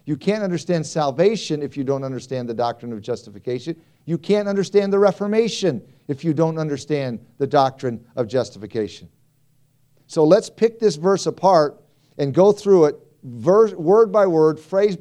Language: English